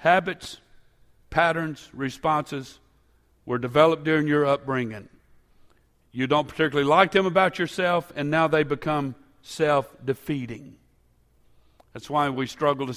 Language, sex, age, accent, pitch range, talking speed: English, male, 50-69, American, 125-150 Hz, 115 wpm